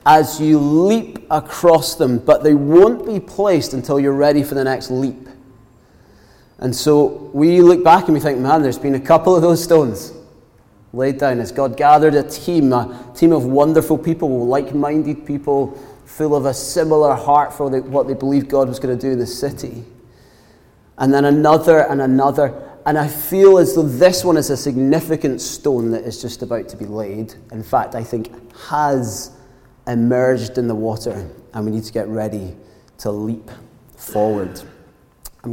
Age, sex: 30-49, male